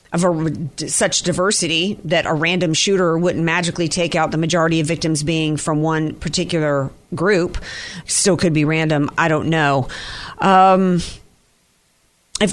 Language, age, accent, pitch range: English, 40-59, American, 170-225 Hz